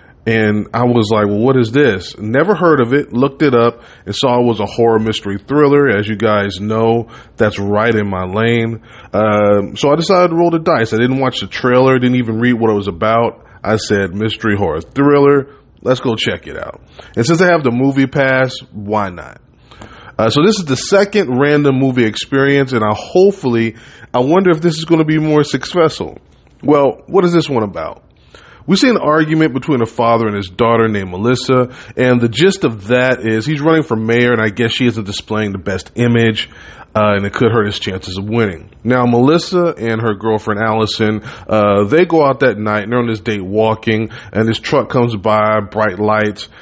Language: English